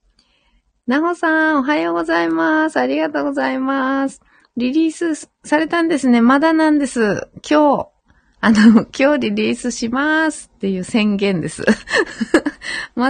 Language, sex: Japanese, female